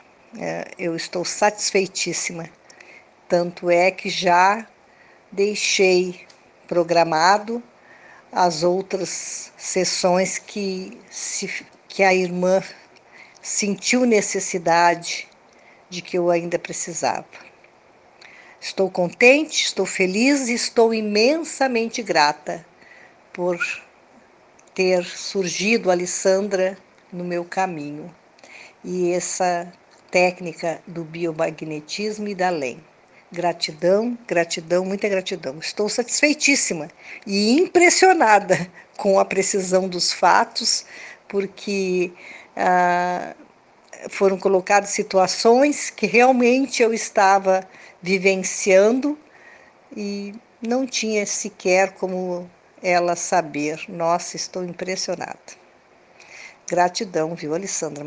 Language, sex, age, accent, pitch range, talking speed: Portuguese, female, 50-69, Brazilian, 175-210 Hz, 85 wpm